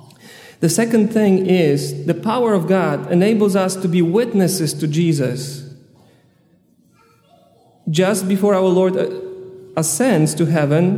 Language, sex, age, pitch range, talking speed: English, male, 40-59, 155-200 Hz, 120 wpm